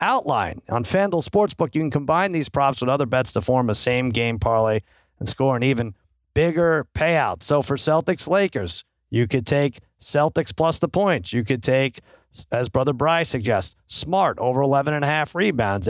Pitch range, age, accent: 120-155 Hz, 40-59, American